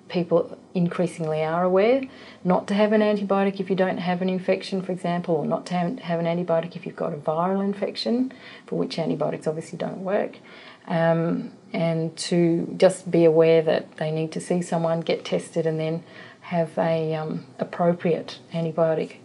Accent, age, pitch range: Australian, 40-59, 160-190 Hz